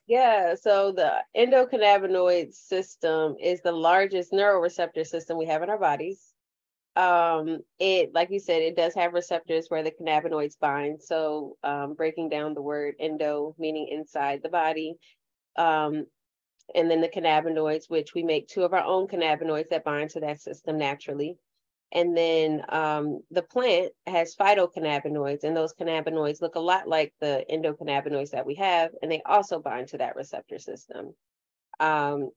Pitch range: 150-175 Hz